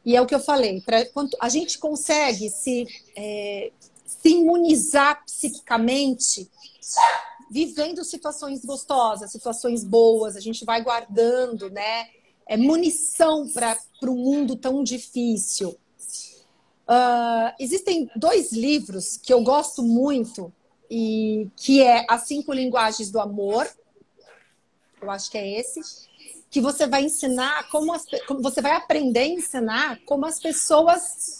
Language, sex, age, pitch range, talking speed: Portuguese, female, 40-59, 230-300 Hz, 130 wpm